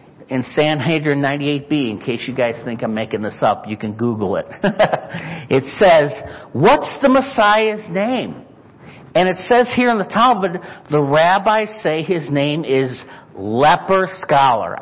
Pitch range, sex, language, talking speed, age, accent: 140-185 Hz, male, English, 150 wpm, 50-69, American